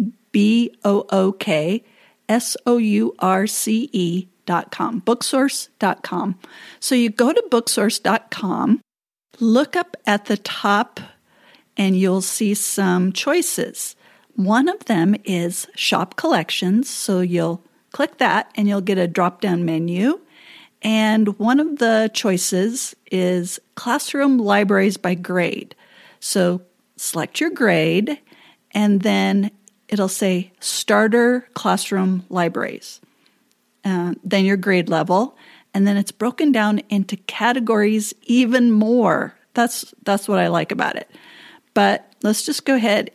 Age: 50-69